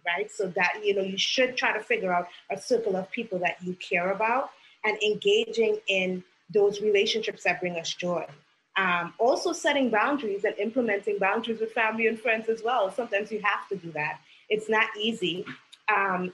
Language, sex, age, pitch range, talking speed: English, female, 30-49, 175-215 Hz, 185 wpm